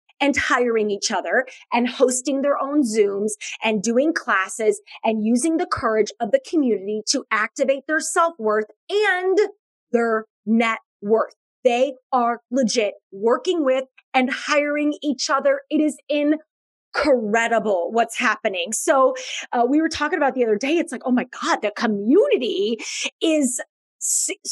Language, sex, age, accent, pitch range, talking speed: English, female, 30-49, American, 205-295 Hz, 145 wpm